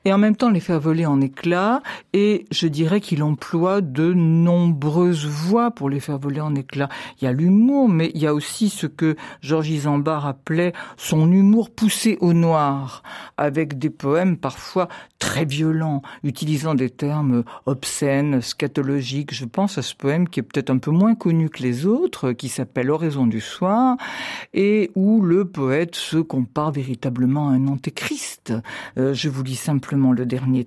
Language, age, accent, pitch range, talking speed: French, 60-79, French, 135-180 Hz, 180 wpm